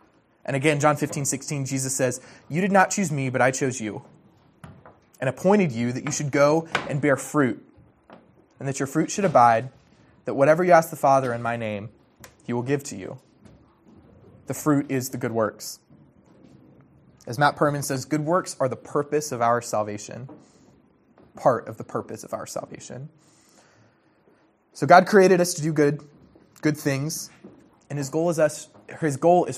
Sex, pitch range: male, 130-150 Hz